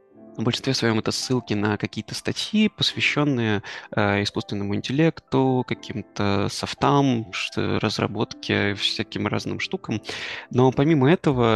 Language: Russian